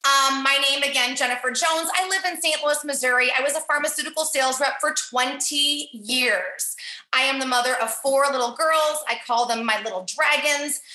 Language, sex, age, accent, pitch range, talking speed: English, female, 30-49, American, 255-335 Hz, 190 wpm